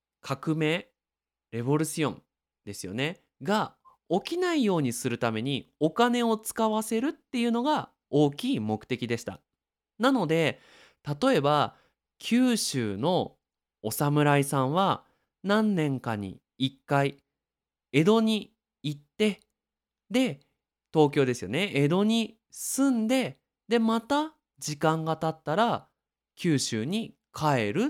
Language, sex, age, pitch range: Japanese, male, 20-39, 135-225 Hz